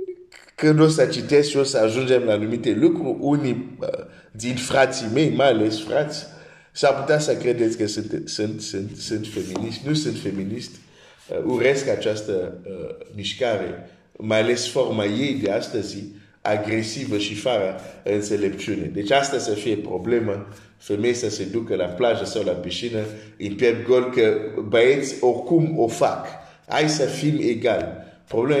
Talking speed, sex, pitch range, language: 155 wpm, male, 110-155 Hz, Romanian